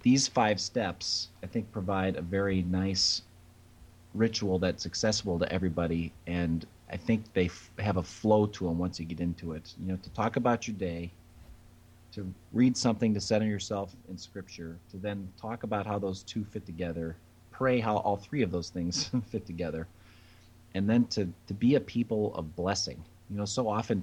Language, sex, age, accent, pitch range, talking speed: English, male, 30-49, American, 85-105 Hz, 185 wpm